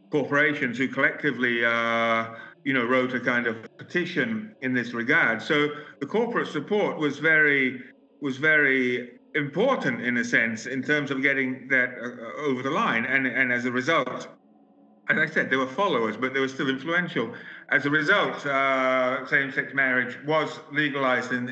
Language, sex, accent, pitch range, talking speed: English, male, British, 120-150 Hz, 165 wpm